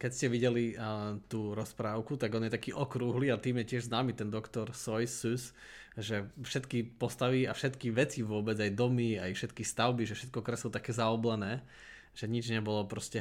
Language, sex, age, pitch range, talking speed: Slovak, male, 20-39, 110-125 Hz, 180 wpm